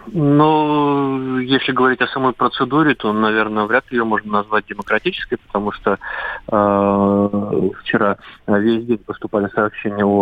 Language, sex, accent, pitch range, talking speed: Russian, male, native, 95-115 Hz, 135 wpm